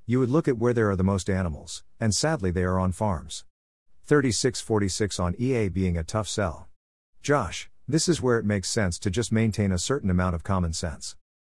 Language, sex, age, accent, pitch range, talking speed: English, male, 50-69, American, 90-115 Hz, 205 wpm